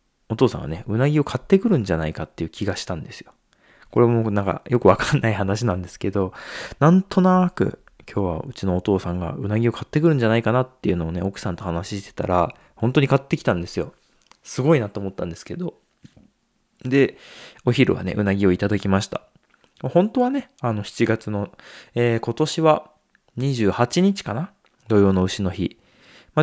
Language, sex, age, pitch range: Japanese, male, 20-39, 90-130 Hz